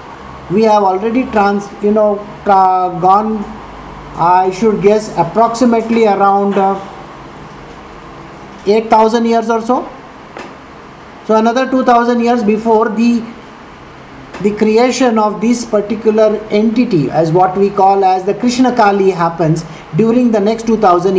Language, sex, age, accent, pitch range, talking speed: English, male, 50-69, Indian, 185-225 Hz, 120 wpm